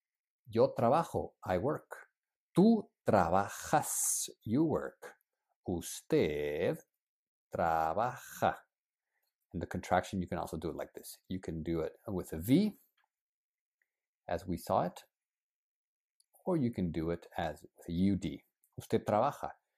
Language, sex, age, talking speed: English, male, 50-69, 125 wpm